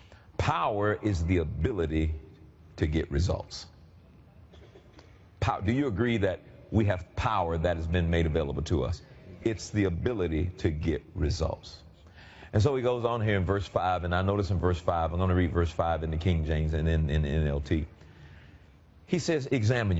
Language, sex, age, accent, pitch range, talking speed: English, male, 40-59, American, 85-120 Hz, 175 wpm